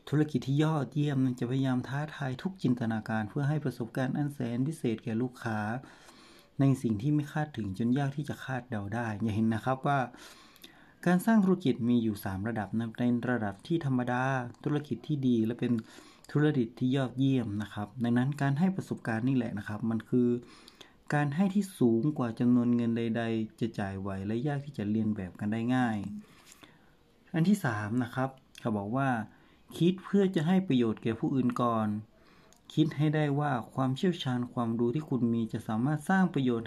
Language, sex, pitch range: Thai, male, 115-145 Hz